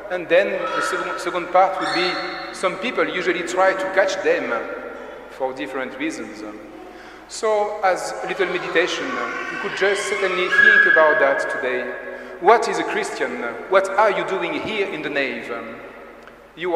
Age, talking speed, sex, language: 40-59, 155 wpm, male, English